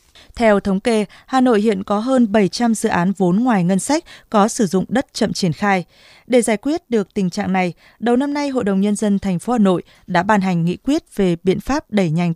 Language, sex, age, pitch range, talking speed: Vietnamese, female, 20-39, 185-240 Hz, 240 wpm